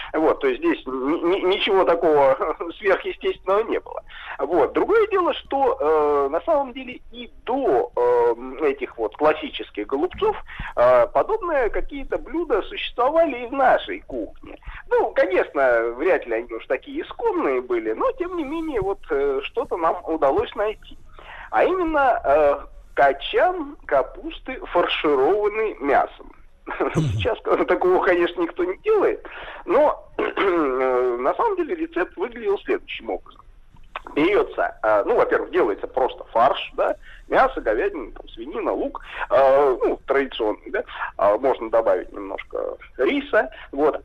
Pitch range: 300-425 Hz